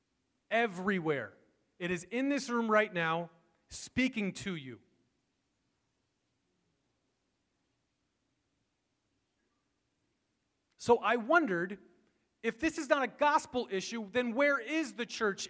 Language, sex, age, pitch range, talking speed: English, male, 30-49, 175-250 Hz, 100 wpm